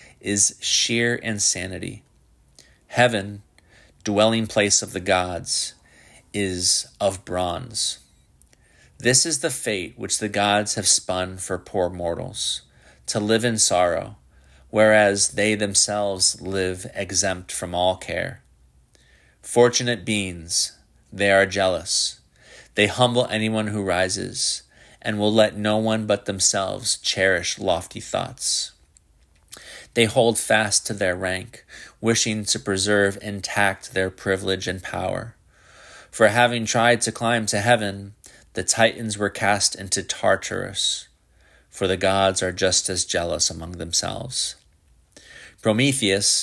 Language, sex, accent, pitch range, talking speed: English, male, American, 90-110 Hz, 120 wpm